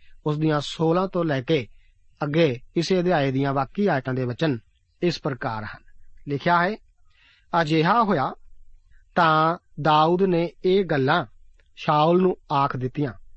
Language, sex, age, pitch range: Punjabi, male, 40-59, 130-175 Hz